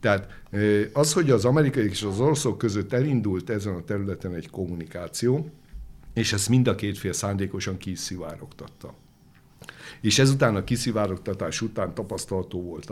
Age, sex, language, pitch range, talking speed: 60-79, male, Hungarian, 95-120 Hz, 135 wpm